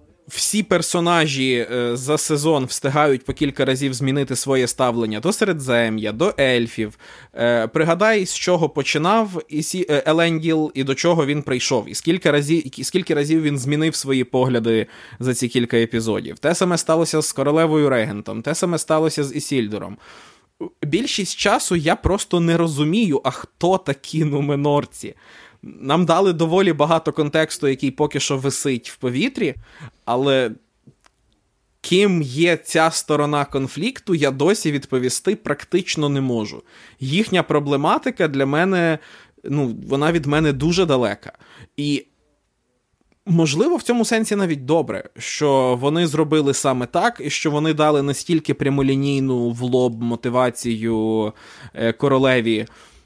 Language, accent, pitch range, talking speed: Ukrainian, native, 130-165 Hz, 130 wpm